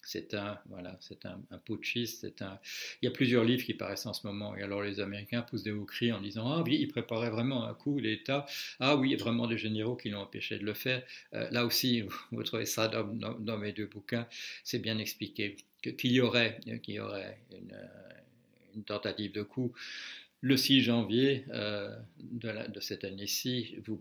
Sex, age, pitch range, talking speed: male, 50-69, 105-125 Hz, 210 wpm